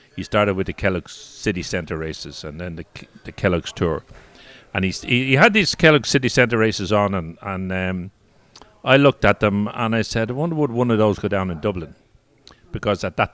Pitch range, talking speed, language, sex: 95-115 Hz, 210 wpm, English, male